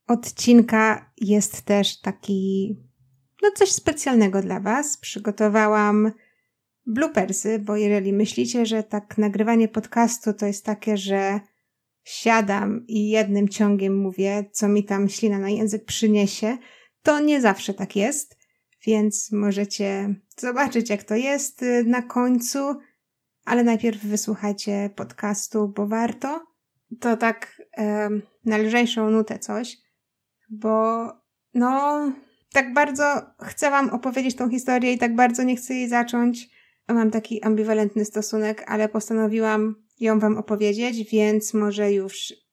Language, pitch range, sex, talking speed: Polish, 210-240 Hz, female, 125 wpm